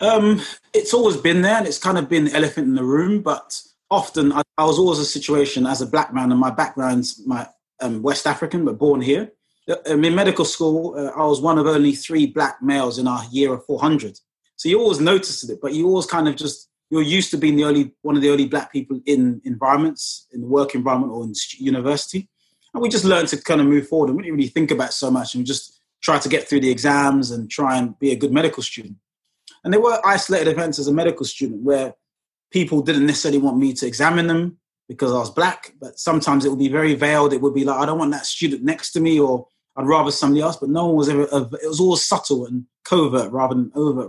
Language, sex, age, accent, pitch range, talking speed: English, male, 20-39, British, 135-165 Hz, 245 wpm